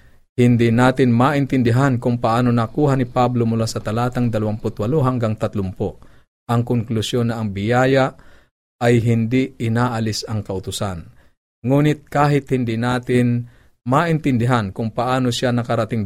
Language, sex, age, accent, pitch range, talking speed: Filipino, male, 50-69, native, 105-125 Hz, 125 wpm